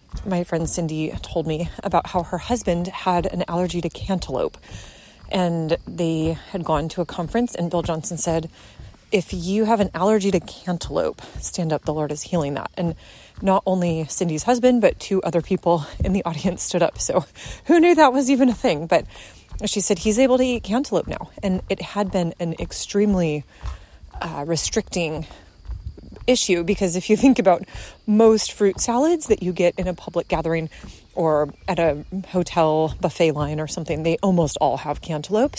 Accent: American